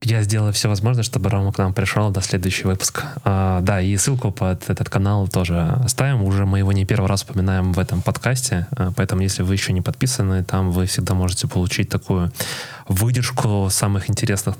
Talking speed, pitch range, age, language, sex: 185 wpm, 95-120 Hz, 20-39, Russian, male